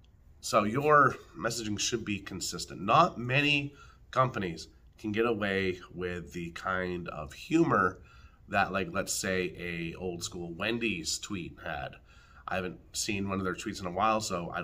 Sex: male